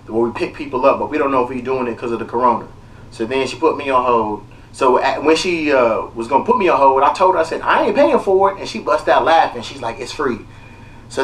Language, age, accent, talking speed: English, 30-49, American, 300 wpm